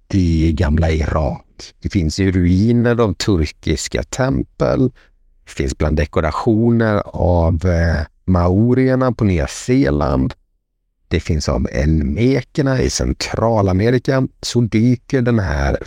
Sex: male